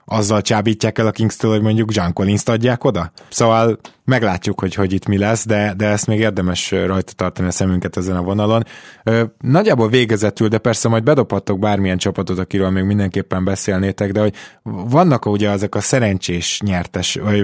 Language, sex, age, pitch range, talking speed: Hungarian, male, 20-39, 95-115 Hz, 180 wpm